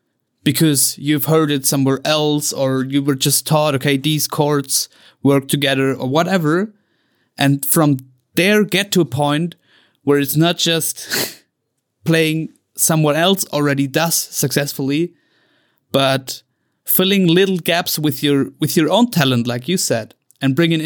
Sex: male